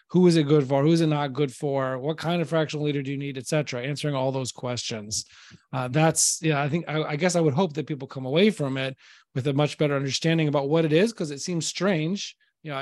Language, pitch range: English, 135-160 Hz